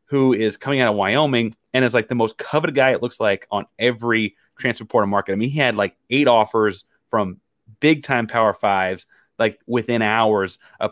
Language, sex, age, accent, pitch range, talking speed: English, male, 30-49, American, 105-125 Hz, 205 wpm